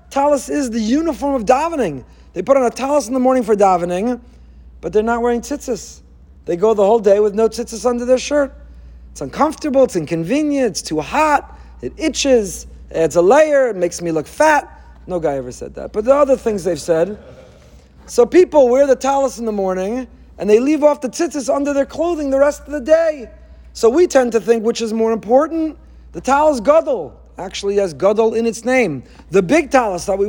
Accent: American